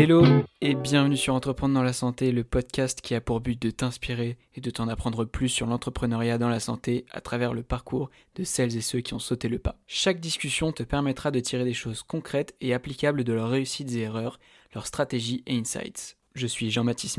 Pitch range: 120-145 Hz